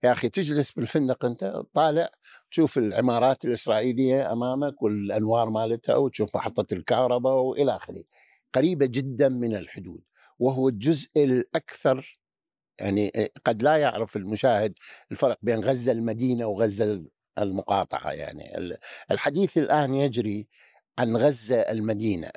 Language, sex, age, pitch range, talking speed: Arabic, male, 50-69, 110-145 Hz, 115 wpm